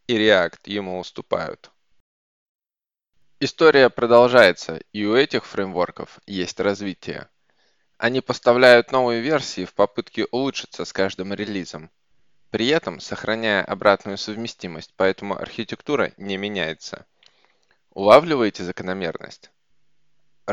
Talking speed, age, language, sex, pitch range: 95 wpm, 20-39, Russian, male, 95-120 Hz